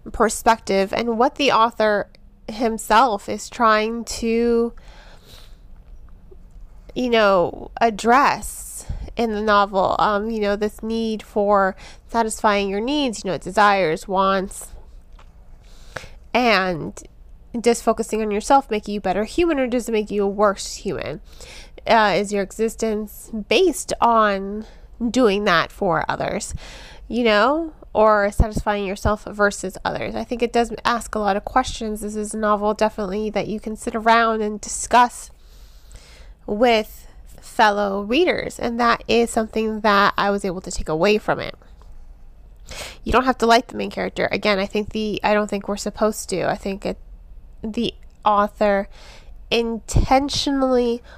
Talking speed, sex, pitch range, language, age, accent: 145 wpm, female, 200-230 Hz, English, 20-39, American